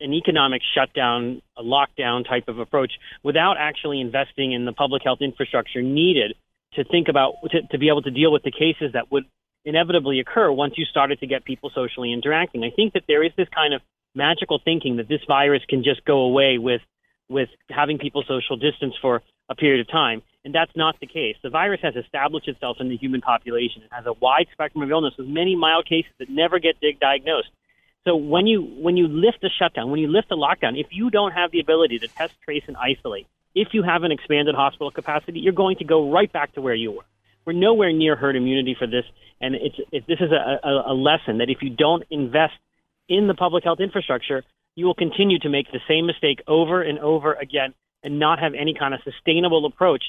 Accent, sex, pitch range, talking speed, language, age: American, male, 130-165 Hz, 220 wpm, English, 30-49